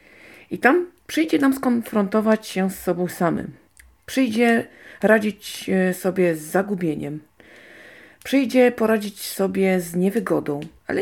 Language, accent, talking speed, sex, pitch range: Polish, native, 110 wpm, female, 170-225 Hz